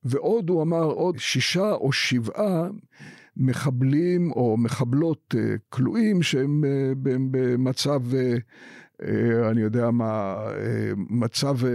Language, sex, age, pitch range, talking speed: Hebrew, male, 50-69, 120-150 Hz, 85 wpm